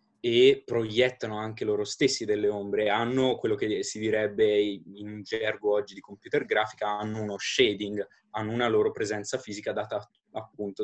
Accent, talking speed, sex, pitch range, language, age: native, 155 wpm, male, 110-135 Hz, Italian, 20-39